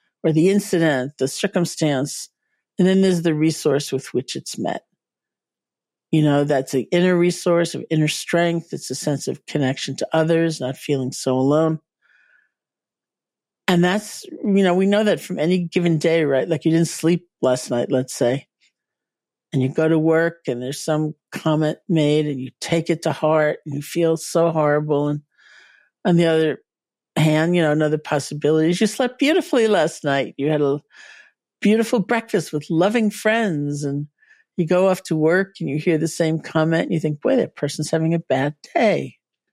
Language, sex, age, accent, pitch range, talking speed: English, male, 50-69, American, 145-180 Hz, 180 wpm